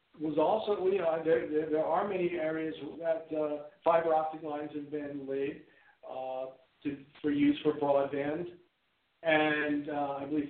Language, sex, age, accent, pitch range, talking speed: English, male, 50-69, American, 145-180 Hz, 155 wpm